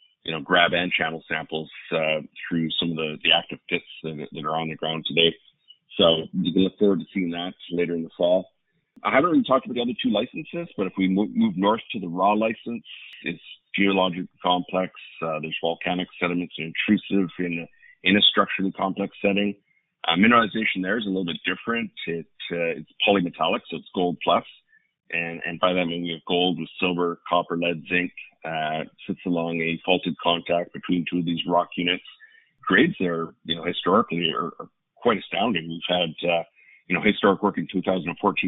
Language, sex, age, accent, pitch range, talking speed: English, male, 40-59, American, 85-95 Hz, 195 wpm